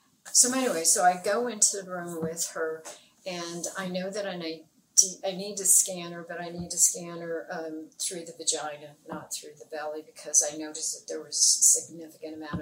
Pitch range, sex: 160-195 Hz, female